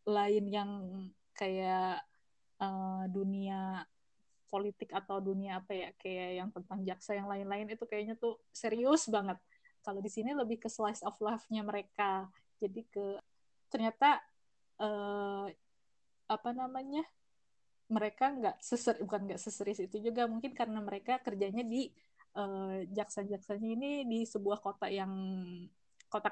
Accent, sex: native, female